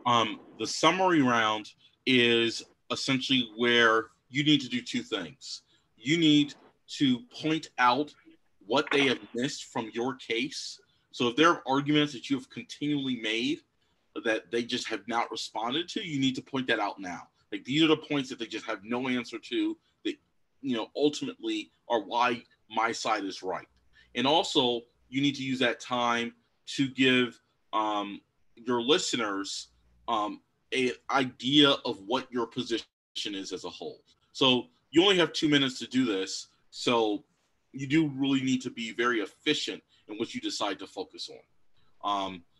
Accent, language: American, English